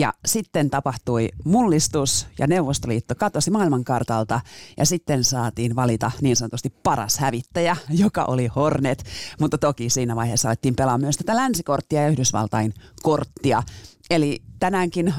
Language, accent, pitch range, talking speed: Finnish, native, 120-160 Hz, 130 wpm